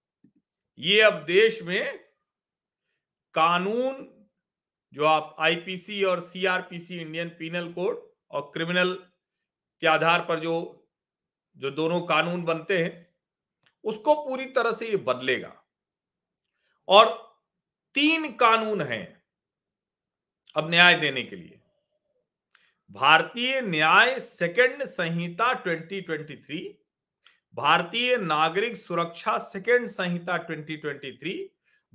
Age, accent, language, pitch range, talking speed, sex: 40-59, native, Hindi, 165-220 Hz, 95 wpm, male